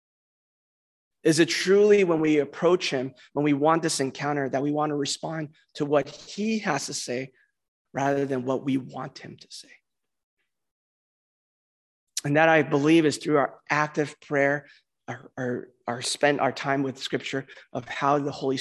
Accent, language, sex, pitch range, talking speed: American, English, male, 135-160 Hz, 170 wpm